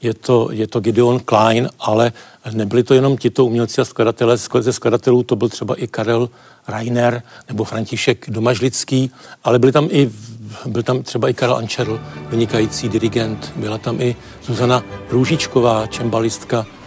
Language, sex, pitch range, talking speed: Czech, male, 110-125 Hz, 150 wpm